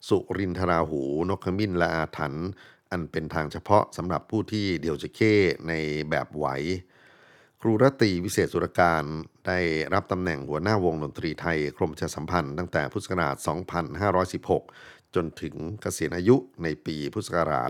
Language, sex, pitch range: Thai, male, 75-95 Hz